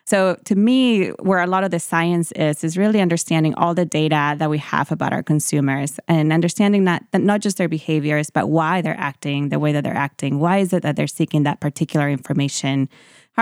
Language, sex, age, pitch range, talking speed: English, female, 20-39, 150-185 Hz, 220 wpm